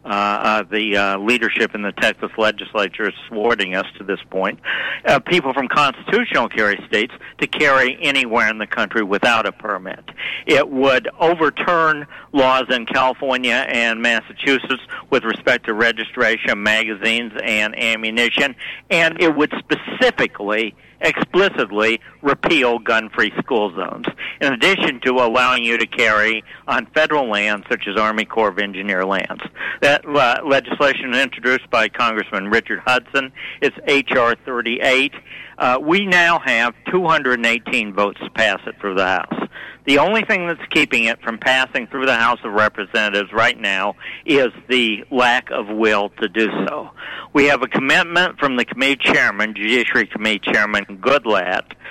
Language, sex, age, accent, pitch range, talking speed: English, male, 60-79, American, 110-145 Hz, 150 wpm